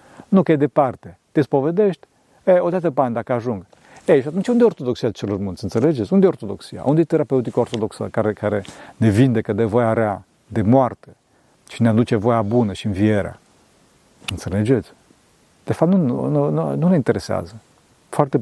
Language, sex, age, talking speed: Romanian, male, 40-59, 180 wpm